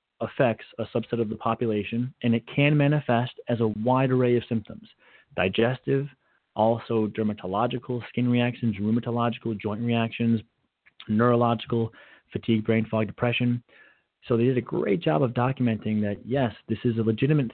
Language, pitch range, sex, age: English, 110-130 Hz, male, 30-49